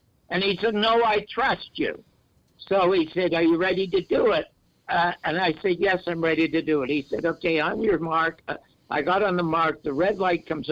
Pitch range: 160-205 Hz